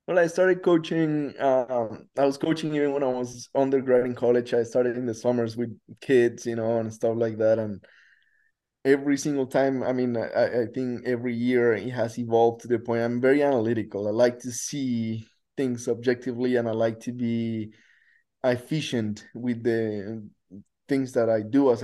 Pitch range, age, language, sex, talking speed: 115-130 Hz, 20-39, English, male, 185 wpm